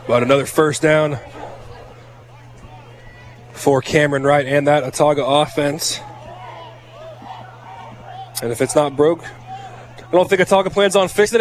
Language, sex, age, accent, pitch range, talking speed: English, male, 20-39, American, 140-175 Hz, 120 wpm